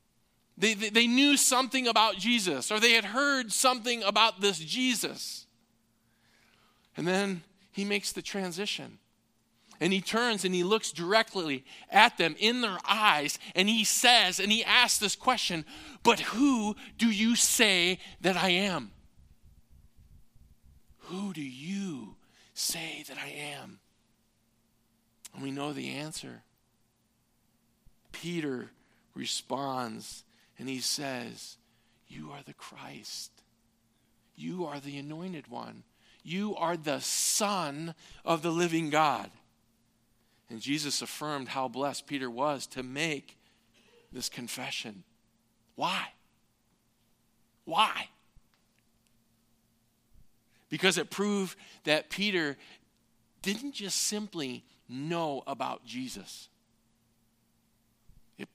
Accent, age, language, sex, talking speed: American, 40-59, English, male, 110 wpm